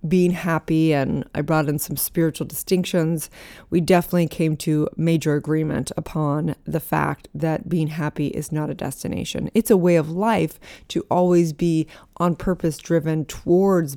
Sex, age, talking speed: female, 20-39, 160 wpm